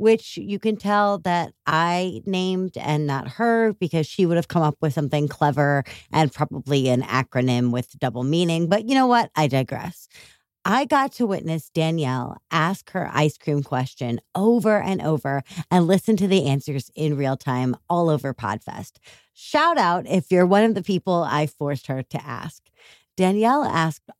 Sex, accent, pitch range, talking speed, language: female, American, 145-205 Hz, 175 wpm, English